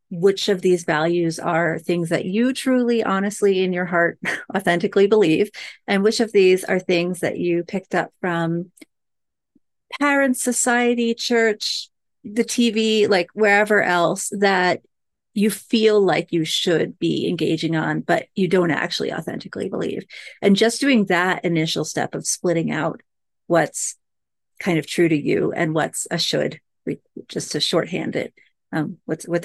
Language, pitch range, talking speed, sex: English, 165-215 Hz, 155 wpm, female